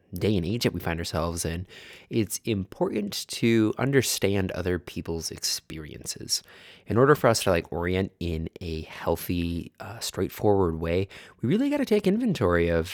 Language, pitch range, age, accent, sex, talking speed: English, 85-100 Hz, 20-39, American, male, 160 wpm